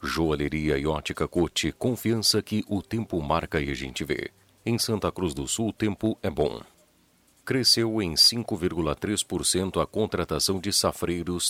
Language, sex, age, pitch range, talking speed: Portuguese, male, 40-59, 80-100 Hz, 145 wpm